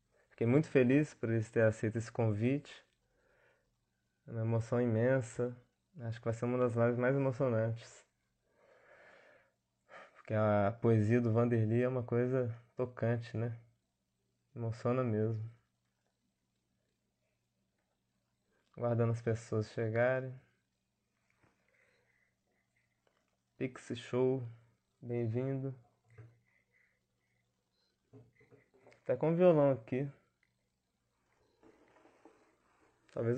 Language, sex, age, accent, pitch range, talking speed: Portuguese, male, 20-39, Brazilian, 80-130 Hz, 85 wpm